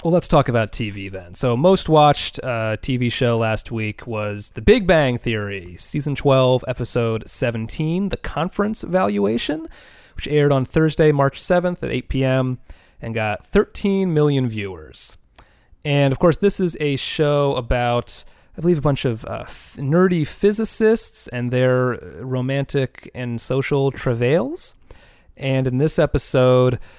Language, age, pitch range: English, 30-49, 110-140 Hz